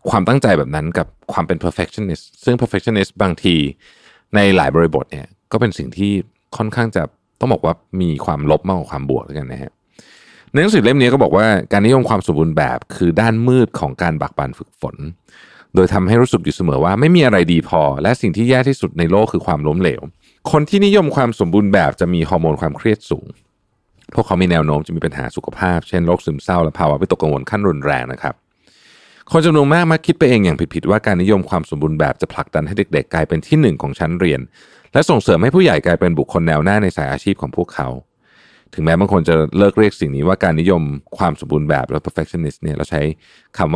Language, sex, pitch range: Thai, male, 75-105 Hz